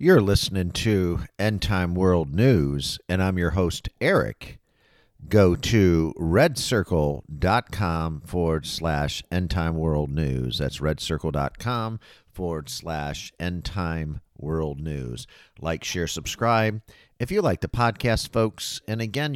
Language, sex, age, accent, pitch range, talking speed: English, male, 50-69, American, 80-105 Hz, 125 wpm